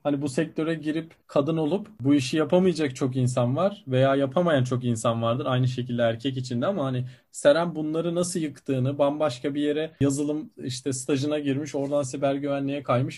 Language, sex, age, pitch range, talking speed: Turkish, male, 40-59, 135-180 Hz, 175 wpm